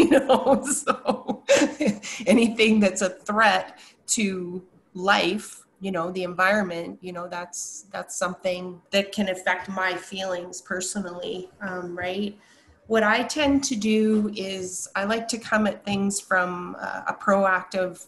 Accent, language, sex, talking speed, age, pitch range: American, English, female, 135 wpm, 30-49, 180-205 Hz